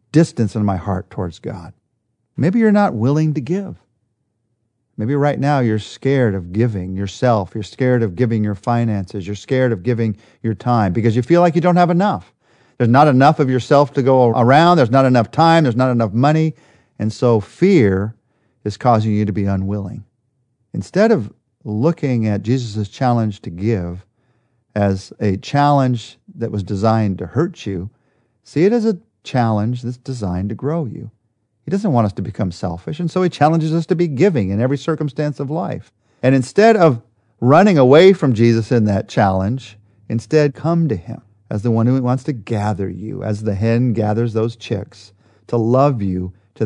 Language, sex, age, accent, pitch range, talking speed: English, male, 40-59, American, 105-140 Hz, 185 wpm